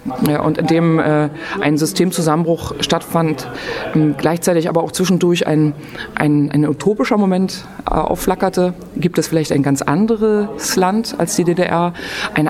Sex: female